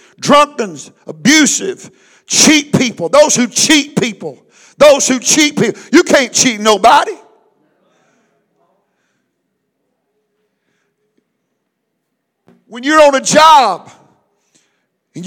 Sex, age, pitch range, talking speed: male, 50-69, 245-315 Hz, 85 wpm